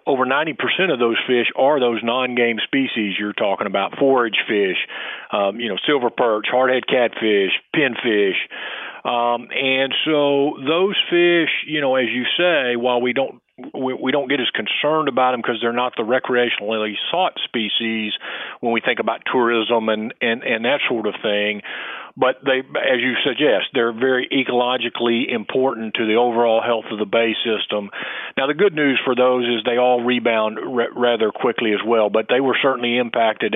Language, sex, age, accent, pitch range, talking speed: English, male, 50-69, American, 115-130 Hz, 175 wpm